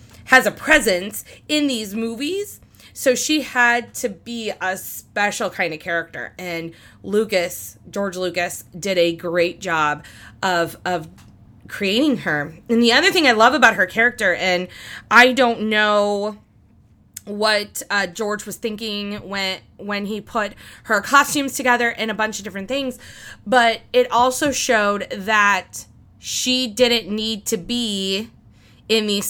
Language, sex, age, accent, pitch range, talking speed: English, female, 20-39, American, 190-250 Hz, 145 wpm